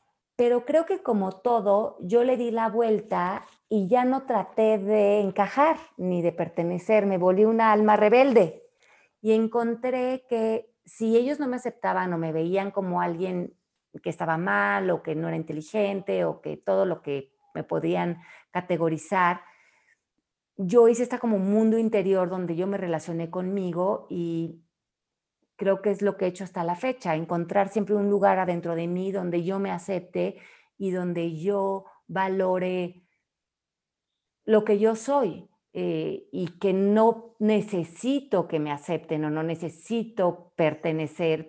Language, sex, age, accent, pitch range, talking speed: Spanish, female, 40-59, Mexican, 170-220 Hz, 155 wpm